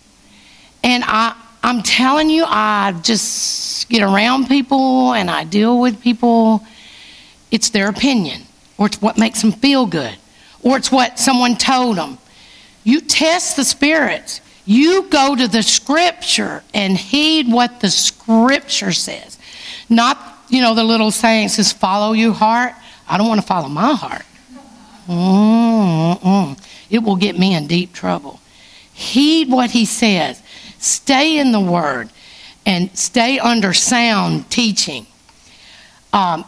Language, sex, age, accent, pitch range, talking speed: English, female, 50-69, American, 200-265 Hz, 140 wpm